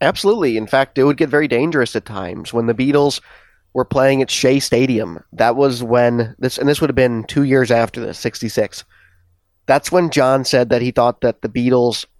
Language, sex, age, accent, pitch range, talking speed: English, male, 30-49, American, 110-130 Hz, 210 wpm